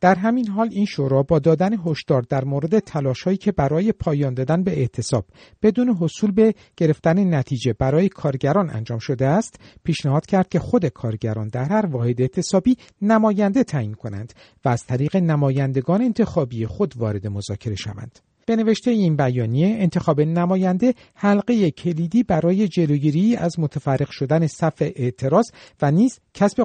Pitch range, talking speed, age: 130-185 Hz, 150 wpm, 50-69